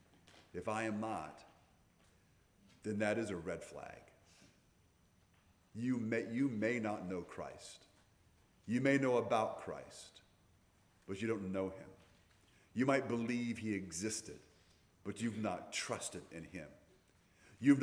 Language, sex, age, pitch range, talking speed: English, male, 40-59, 90-115 Hz, 130 wpm